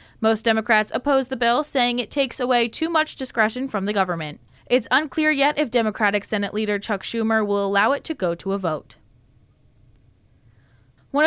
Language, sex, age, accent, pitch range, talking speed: English, female, 10-29, American, 210-280 Hz, 175 wpm